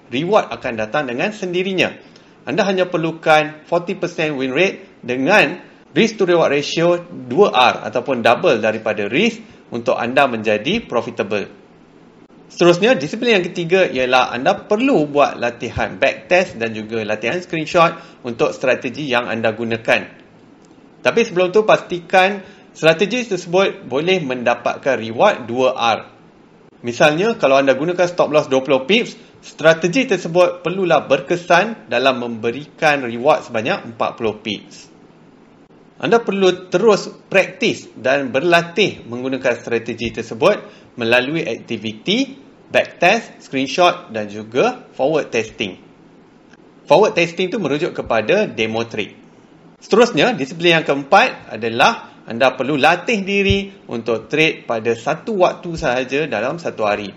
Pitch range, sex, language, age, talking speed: 120-185 Hz, male, Malay, 30-49, 120 wpm